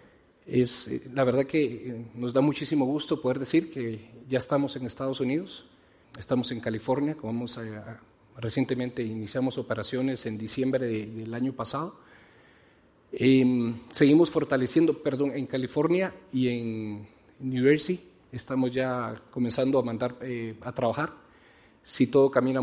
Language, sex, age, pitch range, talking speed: Spanish, male, 40-59, 120-140 Hz, 140 wpm